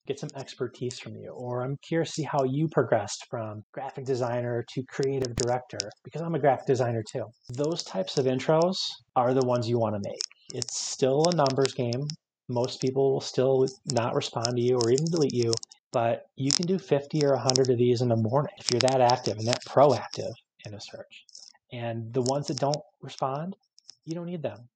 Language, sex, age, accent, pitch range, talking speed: English, male, 30-49, American, 120-145 Hz, 205 wpm